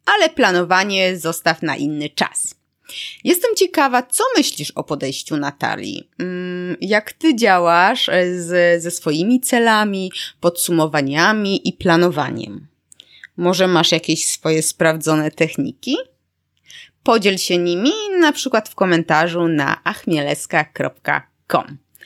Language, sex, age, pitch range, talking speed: Polish, female, 20-39, 170-250 Hz, 100 wpm